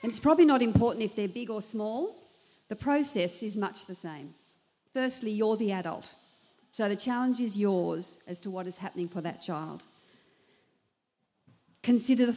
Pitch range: 190-260 Hz